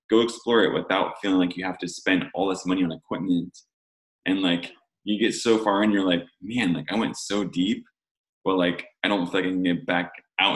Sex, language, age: male, English, 20-39